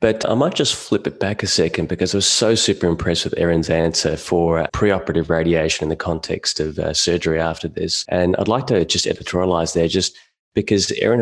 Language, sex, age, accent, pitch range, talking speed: English, male, 30-49, Australian, 80-90 Hz, 210 wpm